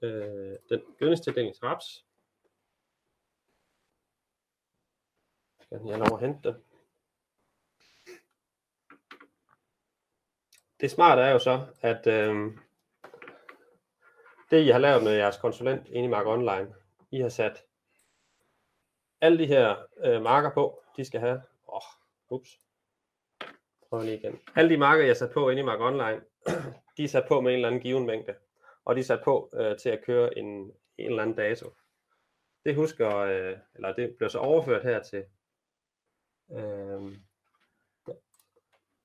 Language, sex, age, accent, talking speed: Danish, male, 30-49, native, 130 wpm